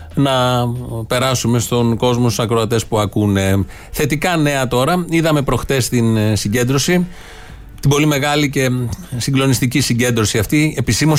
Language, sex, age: Greek, male, 30-49